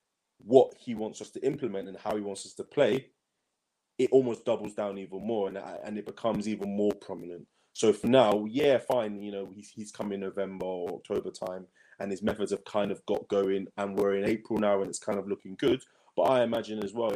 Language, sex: English, male